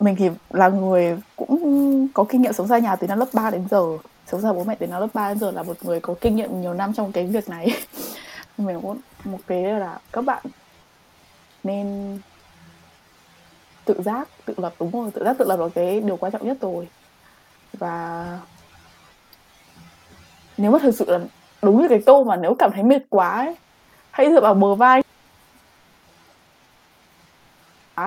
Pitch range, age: 175-225 Hz, 20-39